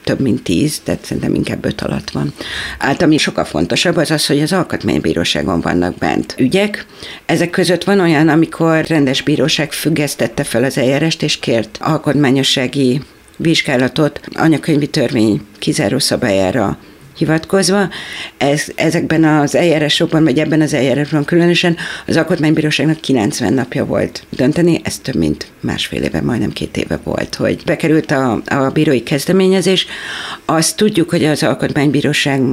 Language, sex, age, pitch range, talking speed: Hungarian, female, 50-69, 140-160 Hz, 140 wpm